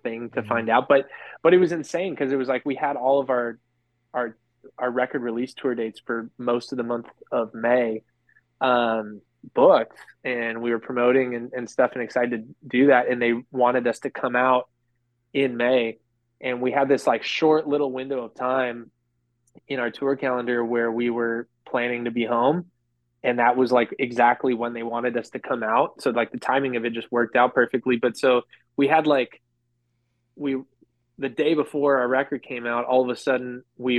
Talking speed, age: 205 wpm, 20-39